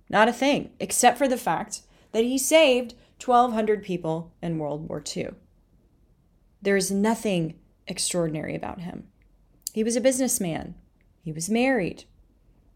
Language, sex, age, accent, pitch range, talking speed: English, female, 30-49, American, 170-245 Hz, 135 wpm